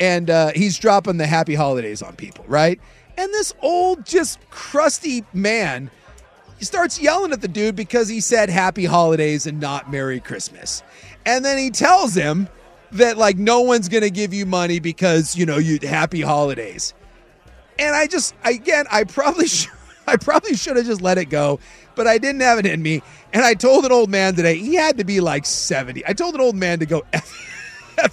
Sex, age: male, 30-49